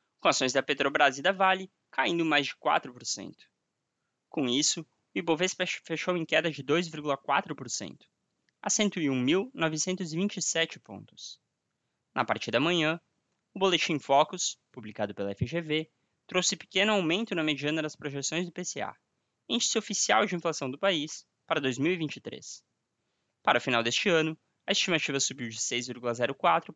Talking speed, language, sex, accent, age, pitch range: 135 wpm, Portuguese, male, Brazilian, 20-39, 130-180 Hz